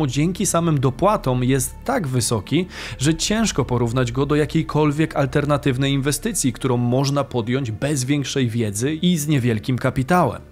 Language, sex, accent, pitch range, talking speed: Polish, male, native, 135-185 Hz, 135 wpm